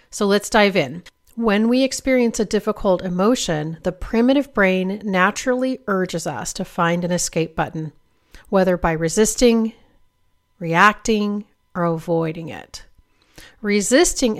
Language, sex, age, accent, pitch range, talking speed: English, female, 40-59, American, 175-220 Hz, 120 wpm